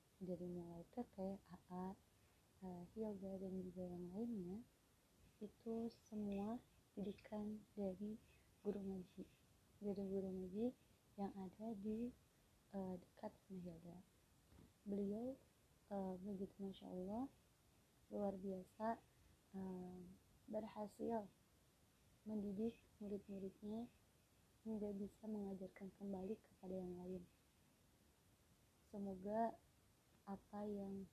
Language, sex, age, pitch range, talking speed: Malayalam, female, 20-39, 195-215 Hz, 85 wpm